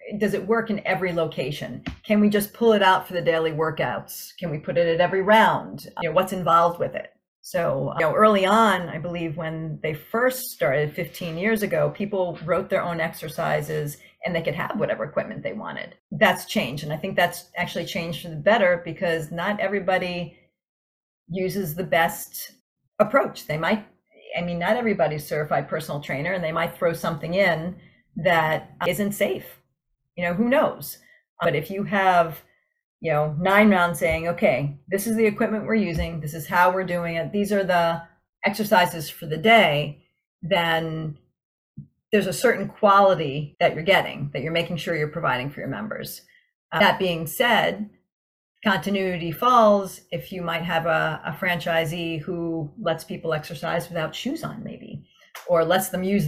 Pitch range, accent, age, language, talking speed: 165-200 Hz, American, 40-59, English, 175 wpm